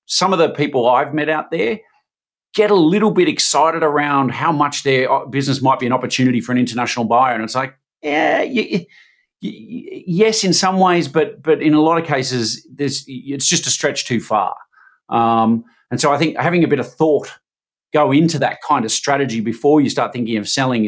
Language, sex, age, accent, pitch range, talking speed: English, male, 40-59, Australian, 125-160 Hz, 205 wpm